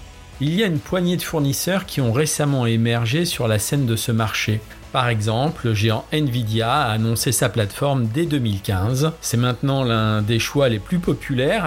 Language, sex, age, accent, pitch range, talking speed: French, male, 40-59, French, 105-140 Hz, 185 wpm